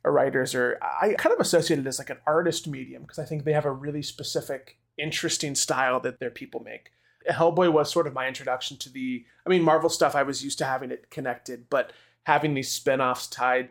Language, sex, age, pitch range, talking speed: English, male, 20-39, 130-160 Hz, 220 wpm